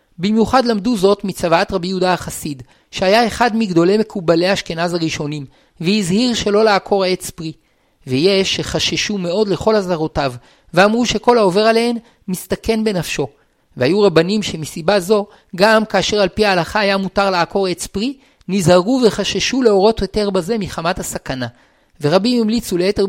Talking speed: 140 wpm